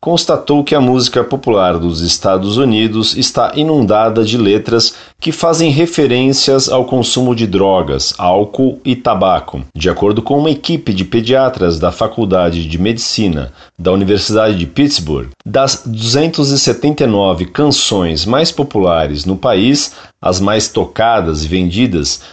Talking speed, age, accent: 130 wpm, 40-59, Brazilian